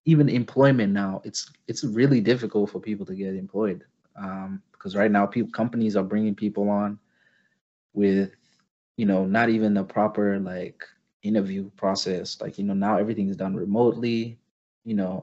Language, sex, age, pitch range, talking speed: English, male, 20-39, 95-115 Hz, 165 wpm